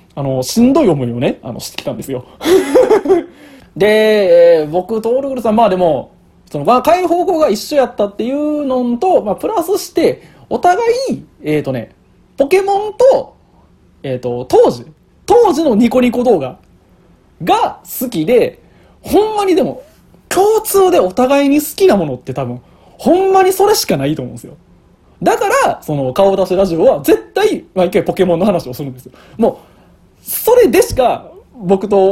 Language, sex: Japanese, male